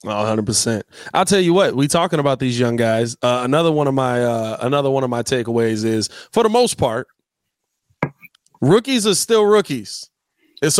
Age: 20-39